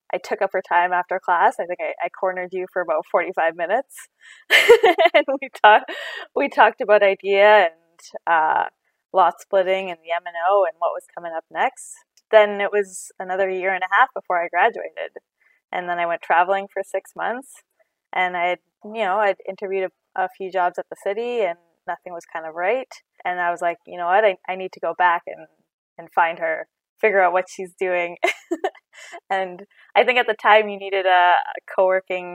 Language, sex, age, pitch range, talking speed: English, female, 20-39, 175-215 Hz, 200 wpm